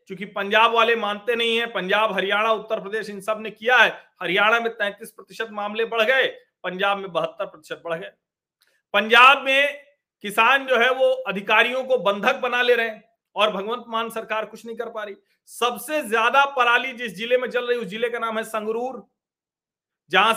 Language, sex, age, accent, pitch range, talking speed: Hindi, male, 40-59, native, 200-255 Hz, 190 wpm